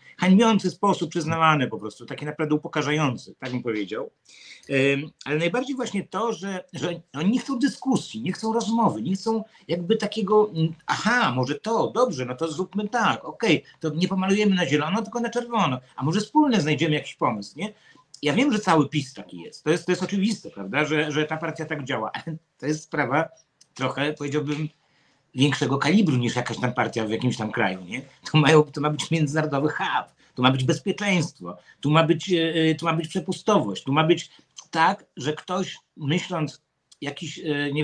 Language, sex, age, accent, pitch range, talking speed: Polish, male, 50-69, native, 145-190 Hz, 180 wpm